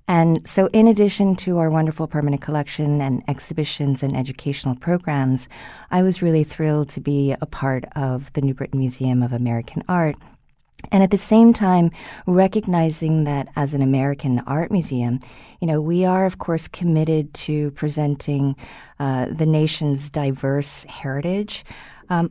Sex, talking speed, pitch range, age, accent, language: female, 155 wpm, 135-175 Hz, 40-59, American, English